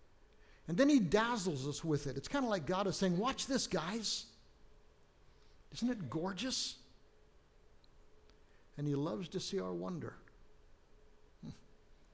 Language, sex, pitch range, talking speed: English, male, 140-185 Hz, 140 wpm